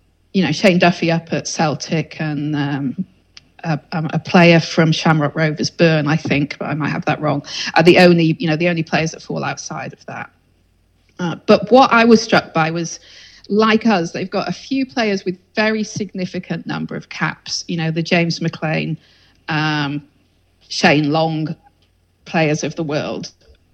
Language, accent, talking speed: English, British, 175 wpm